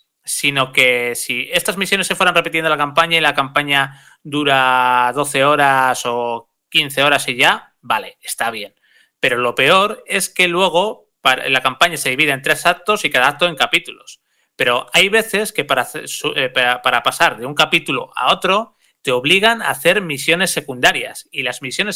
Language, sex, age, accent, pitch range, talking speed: Spanish, male, 30-49, Spanish, 135-180 Hz, 175 wpm